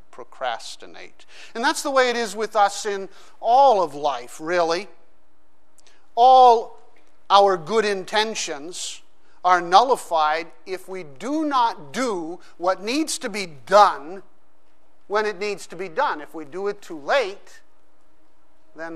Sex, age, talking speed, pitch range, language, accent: male, 50-69, 135 wpm, 155-200 Hz, English, American